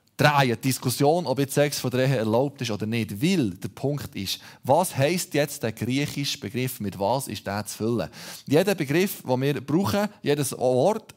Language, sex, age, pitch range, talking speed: German, male, 20-39, 125-175 Hz, 185 wpm